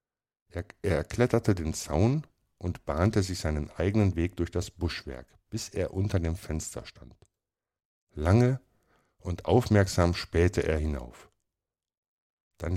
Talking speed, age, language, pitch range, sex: 120 wpm, 60-79, German, 80-100 Hz, male